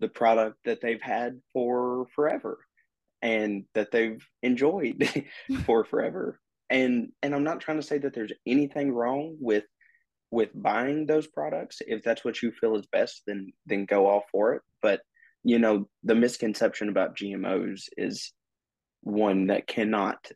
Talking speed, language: 155 wpm, English